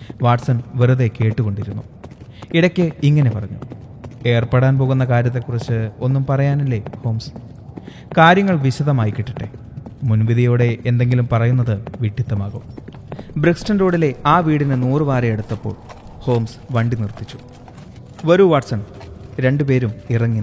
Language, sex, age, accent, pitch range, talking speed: Malayalam, male, 30-49, native, 110-135 Hz, 95 wpm